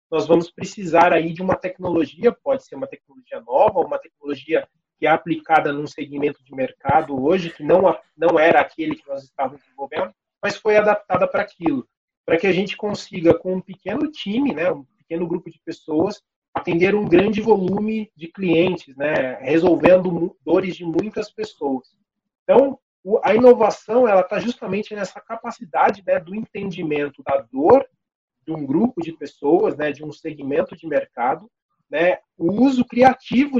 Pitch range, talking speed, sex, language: 160-235 Hz, 165 wpm, male, Portuguese